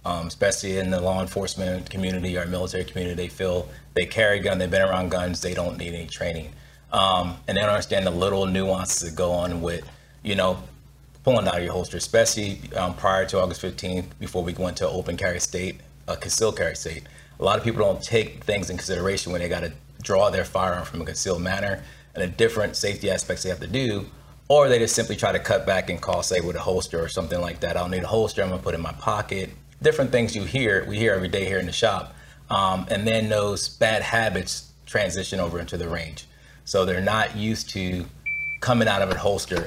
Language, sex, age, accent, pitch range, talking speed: English, male, 30-49, American, 90-100 Hz, 235 wpm